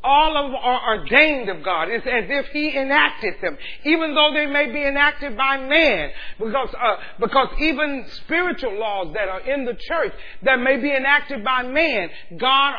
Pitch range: 235-300 Hz